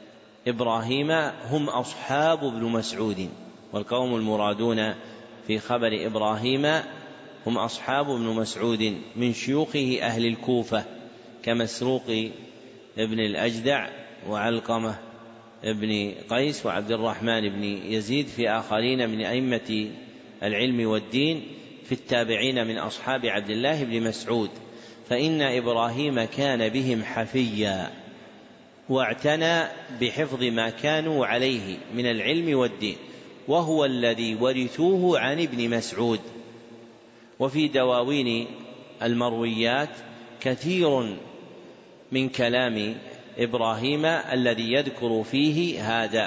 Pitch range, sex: 115-130 Hz, male